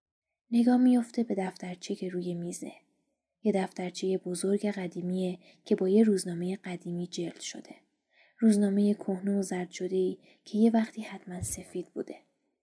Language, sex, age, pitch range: Persian, female, 20-39, 185-240 Hz